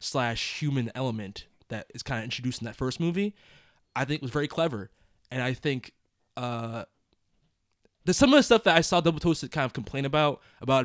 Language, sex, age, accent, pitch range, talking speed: English, male, 20-39, American, 120-170 Hz, 200 wpm